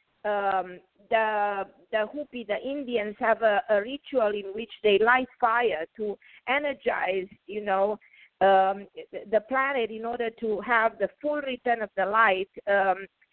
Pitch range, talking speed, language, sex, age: 215-255 Hz, 150 wpm, English, female, 50-69